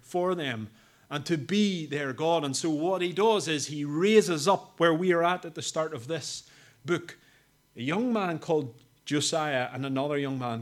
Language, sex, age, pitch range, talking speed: English, male, 30-49, 140-185 Hz, 200 wpm